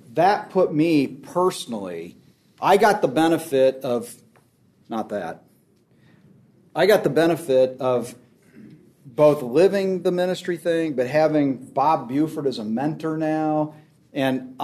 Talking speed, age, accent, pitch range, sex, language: 125 wpm, 40-59, American, 125-155 Hz, male, English